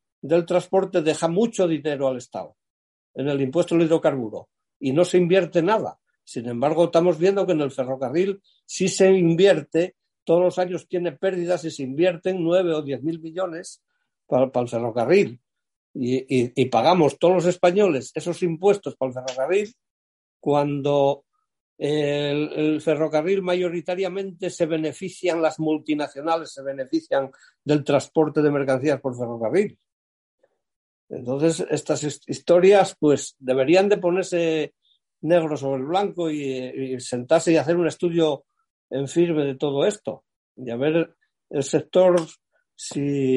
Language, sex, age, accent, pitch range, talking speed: Spanish, male, 60-79, Spanish, 140-185 Hz, 145 wpm